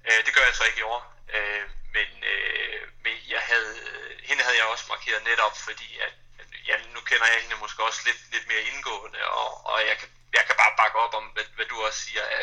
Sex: male